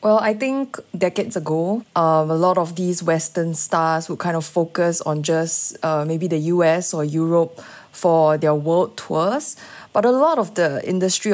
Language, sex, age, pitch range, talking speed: English, female, 20-39, 160-195 Hz, 180 wpm